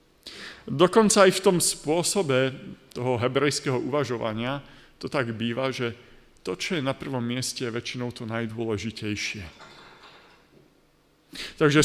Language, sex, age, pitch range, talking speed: Slovak, male, 50-69, 130-190 Hz, 115 wpm